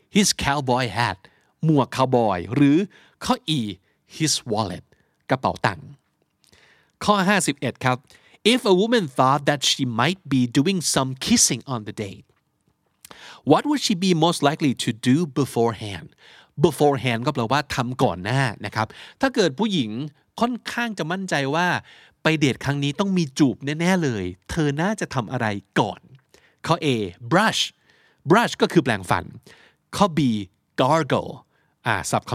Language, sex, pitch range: Thai, male, 120-170 Hz